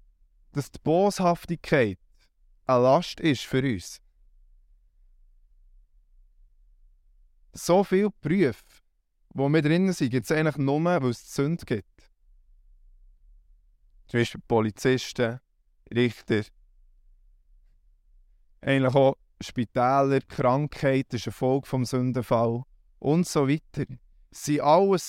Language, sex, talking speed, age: German, male, 100 wpm, 20-39